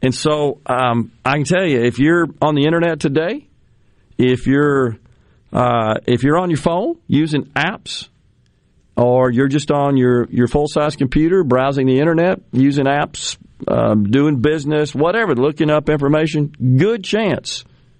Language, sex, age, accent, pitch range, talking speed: English, male, 40-59, American, 115-145 Hz, 150 wpm